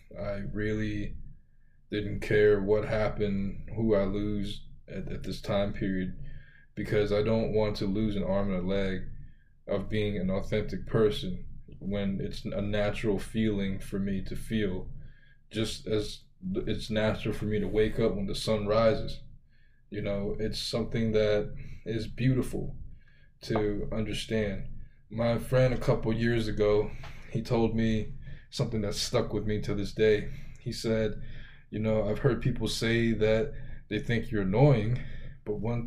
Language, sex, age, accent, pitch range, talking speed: English, male, 20-39, American, 105-120 Hz, 155 wpm